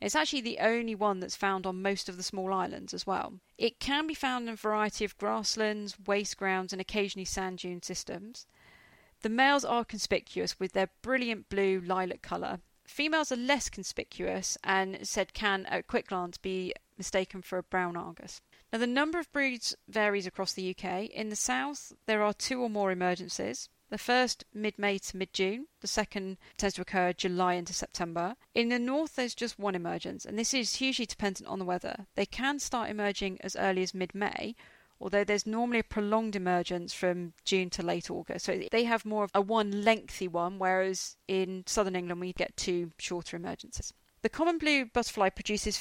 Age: 40-59